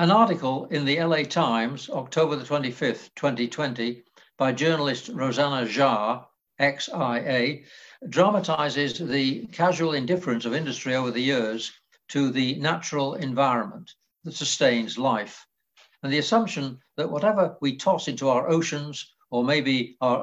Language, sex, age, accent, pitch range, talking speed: English, male, 60-79, British, 130-160 Hz, 130 wpm